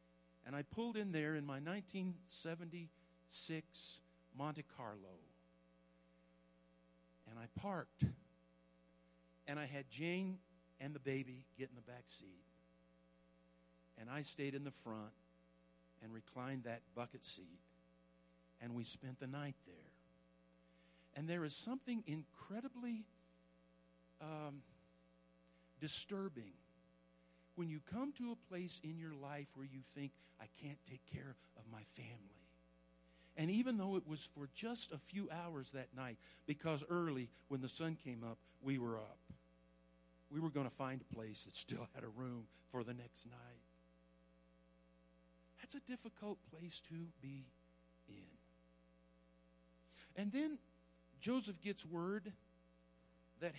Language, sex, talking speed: English, male, 135 wpm